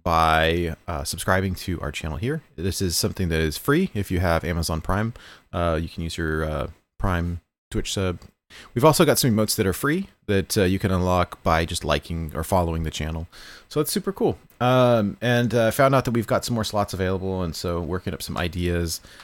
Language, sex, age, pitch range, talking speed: English, male, 30-49, 85-105 Hz, 220 wpm